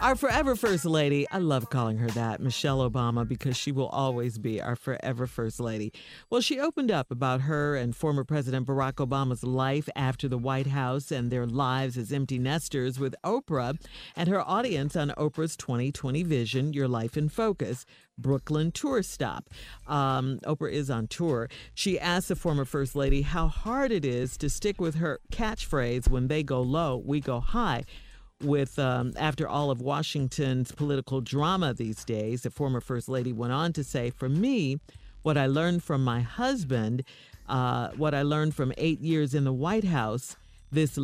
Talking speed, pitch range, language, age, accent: 180 wpm, 125-155 Hz, English, 50-69, American